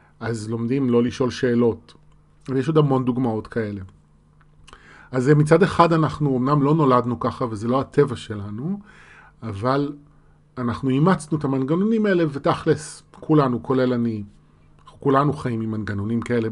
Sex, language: male, Hebrew